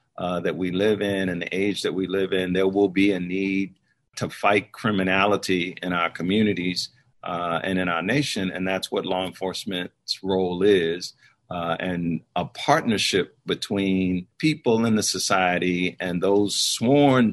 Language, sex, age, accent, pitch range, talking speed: English, male, 50-69, American, 90-100 Hz, 165 wpm